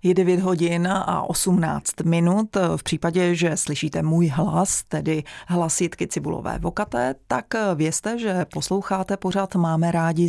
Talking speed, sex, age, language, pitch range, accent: 135 wpm, female, 30-49, Czech, 160-190 Hz, native